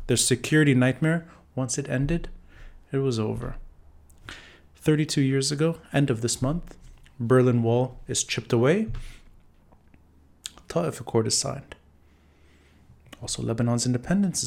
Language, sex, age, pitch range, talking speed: English, male, 30-49, 85-140 Hz, 115 wpm